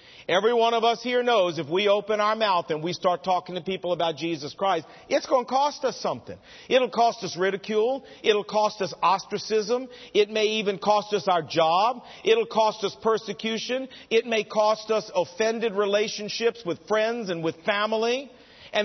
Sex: male